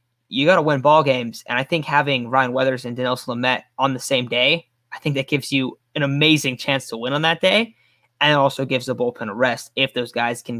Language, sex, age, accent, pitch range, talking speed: English, male, 10-29, American, 120-150 Hz, 250 wpm